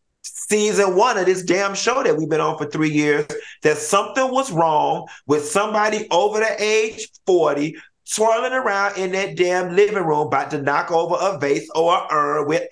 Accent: American